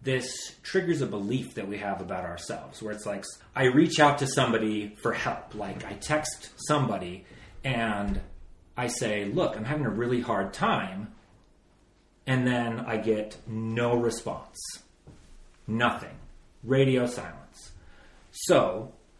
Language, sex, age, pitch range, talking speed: English, male, 30-49, 105-135 Hz, 135 wpm